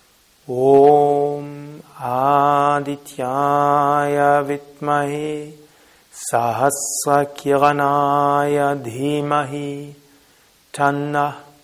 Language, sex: German, male